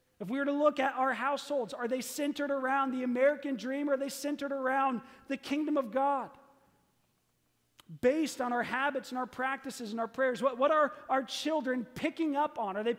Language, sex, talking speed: English, male, 200 wpm